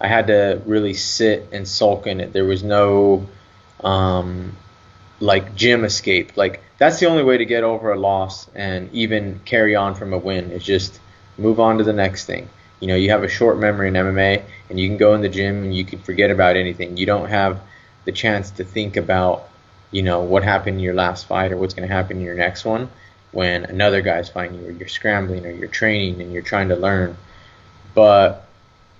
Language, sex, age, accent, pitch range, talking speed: English, male, 20-39, American, 95-105 Hz, 215 wpm